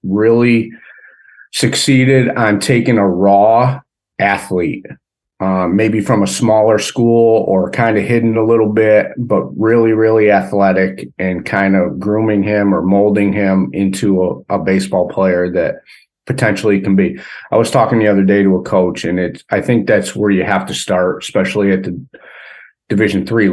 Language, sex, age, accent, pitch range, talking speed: English, male, 40-59, American, 95-110 Hz, 165 wpm